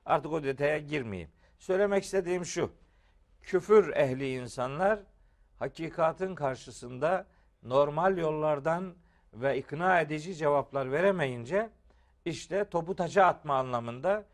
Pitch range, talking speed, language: 130-190 Hz, 95 wpm, Turkish